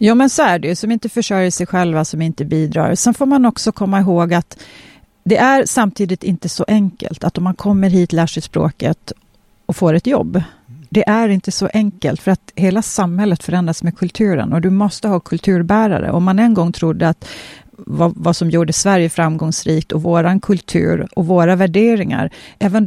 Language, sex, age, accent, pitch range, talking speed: Swedish, female, 40-59, native, 165-200 Hz, 195 wpm